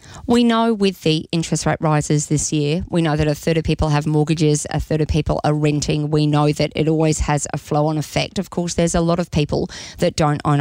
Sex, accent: female, Australian